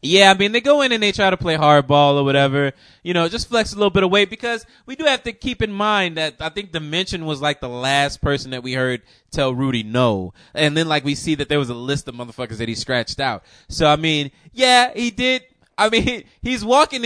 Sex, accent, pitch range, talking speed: male, American, 135-195 Hz, 255 wpm